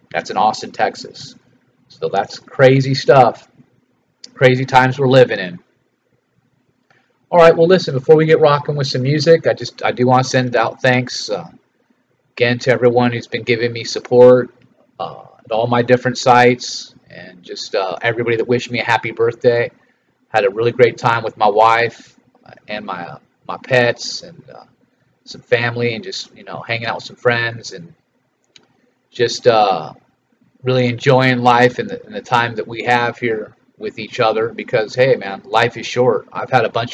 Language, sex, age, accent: English, male, 30-49, American